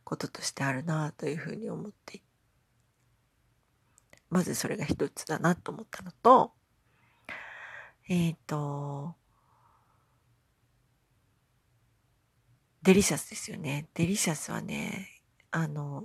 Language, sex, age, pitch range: Japanese, female, 40-59, 125-205 Hz